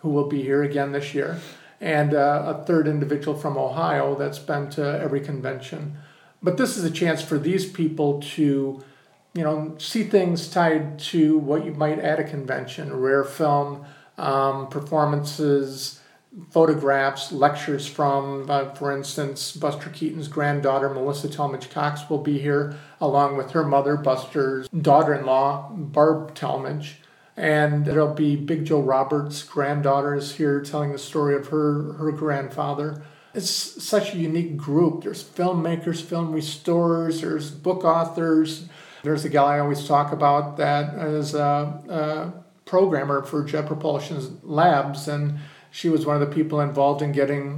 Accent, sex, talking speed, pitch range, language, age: American, male, 155 wpm, 140-155 Hz, English, 50-69